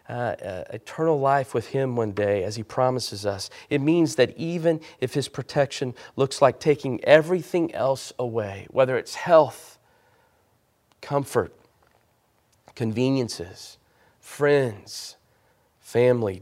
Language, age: English, 40-59